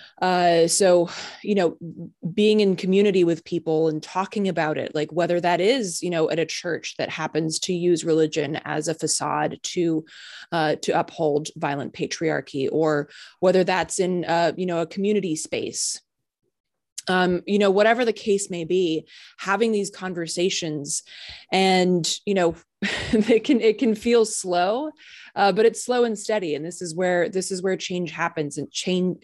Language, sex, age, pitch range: English, female, 20-39, 160-200 Hz